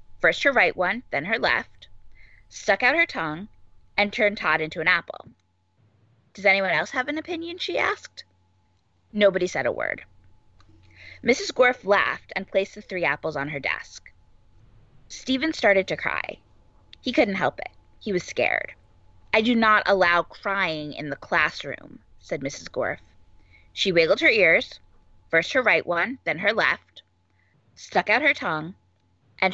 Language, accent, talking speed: English, American, 160 wpm